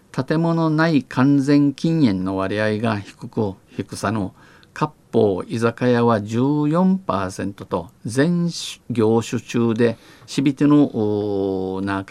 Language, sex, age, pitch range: Japanese, male, 50-69, 110-140 Hz